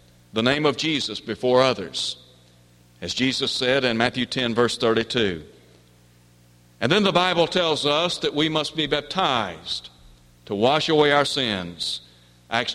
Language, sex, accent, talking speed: English, male, American, 145 wpm